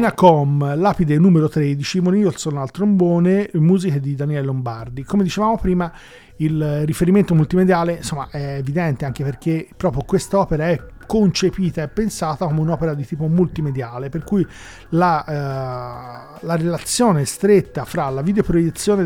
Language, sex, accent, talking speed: Italian, male, native, 135 wpm